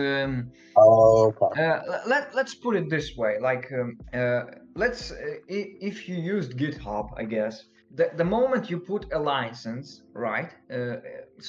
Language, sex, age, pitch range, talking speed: English, male, 20-39, 115-155 Hz, 145 wpm